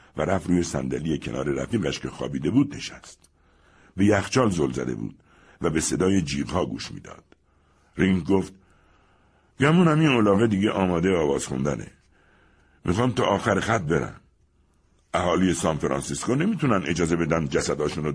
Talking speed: 140 wpm